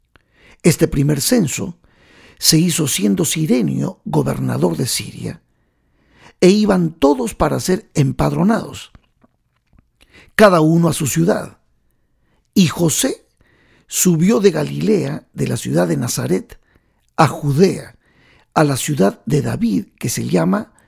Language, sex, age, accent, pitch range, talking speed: Spanish, male, 50-69, Mexican, 135-195 Hz, 120 wpm